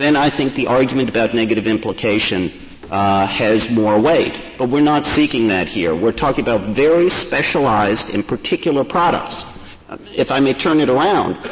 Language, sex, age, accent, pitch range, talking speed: English, male, 50-69, American, 120-155 Hz, 165 wpm